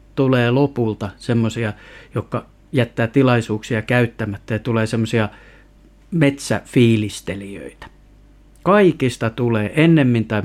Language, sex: Finnish, male